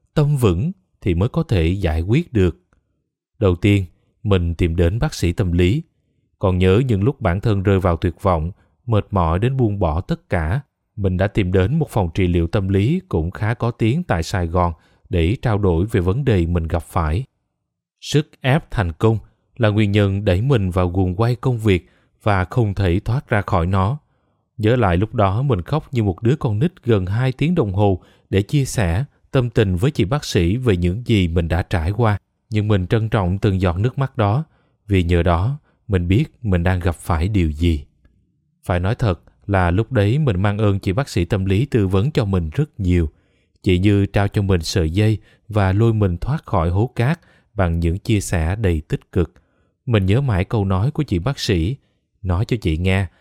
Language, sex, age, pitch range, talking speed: Vietnamese, male, 20-39, 90-120 Hz, 210 wpm